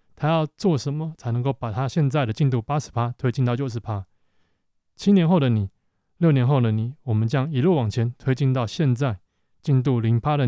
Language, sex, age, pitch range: Chinese, male, 20-39, 115-145 Hz